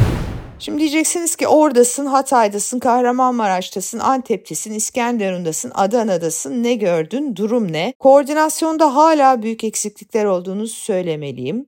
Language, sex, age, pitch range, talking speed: Turkish, female, 50-69, 230-290 Hz, 100 wpm